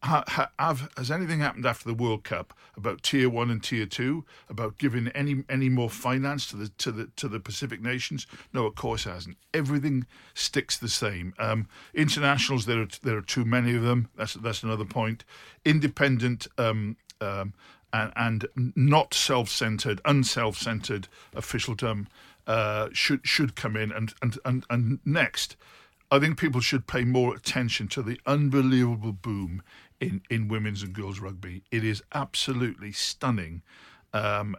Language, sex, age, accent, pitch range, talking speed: English, male, 50-69, British, 110-130 Hz, 170 wpm